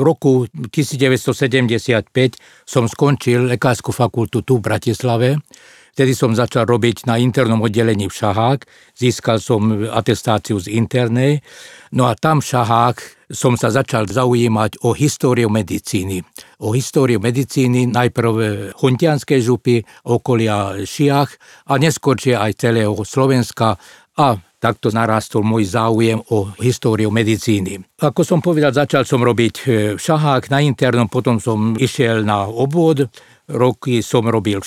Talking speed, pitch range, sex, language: 130 wpm, 110-130 Hz, male, Slovak